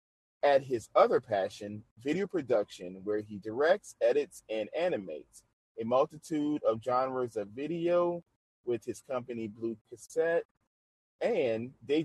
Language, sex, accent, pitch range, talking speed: English, male, American, 110-150 Hz, 125 wpm